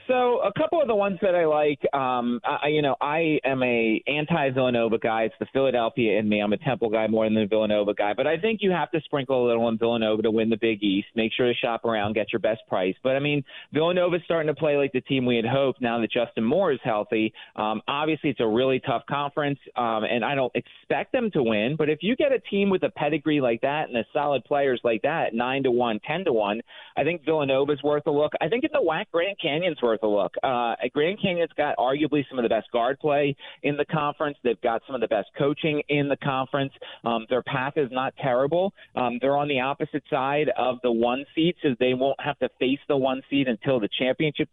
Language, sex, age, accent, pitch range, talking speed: English, male, 30-49, American, 120-150 Hz, 250 wpm